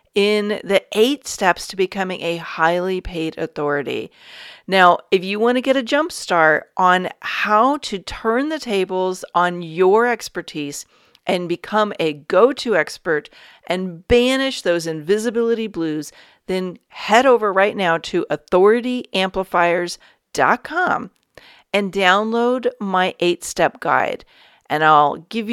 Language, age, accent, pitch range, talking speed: English, 40-59, American, 175-230 Hz, 130 wpm